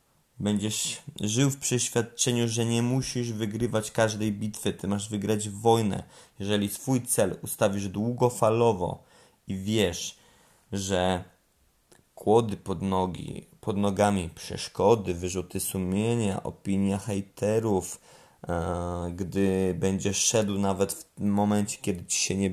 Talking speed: 110 wpm